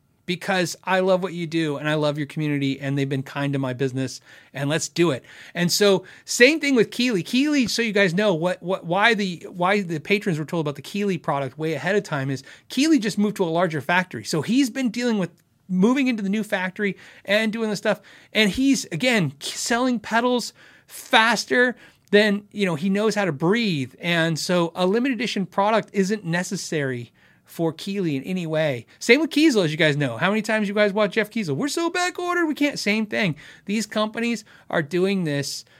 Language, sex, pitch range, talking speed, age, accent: English, male, 150-210 Hz, 210 wpm, 30-49, American